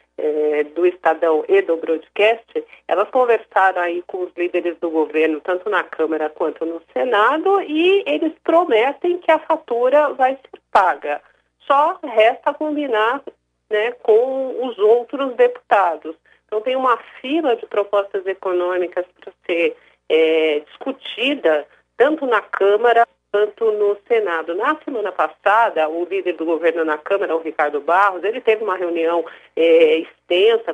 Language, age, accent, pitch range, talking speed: Portuguese, 40-59, Brazilian, 180-275 Hz, 135 wpm